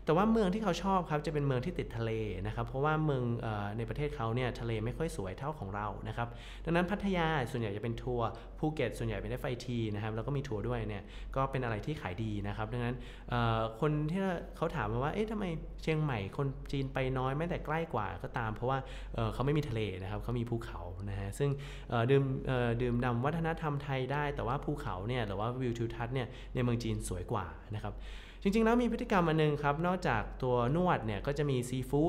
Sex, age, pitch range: male, 20-39, 115-145 Hz